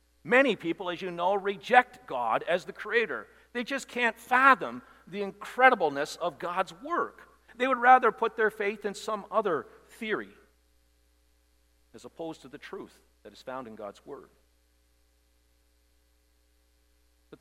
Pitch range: 140-235 Hz